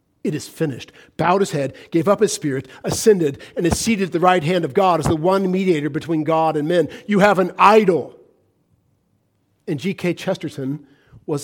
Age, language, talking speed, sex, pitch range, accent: 50-69, English, 190 wpm, male, 150-225 Hz, American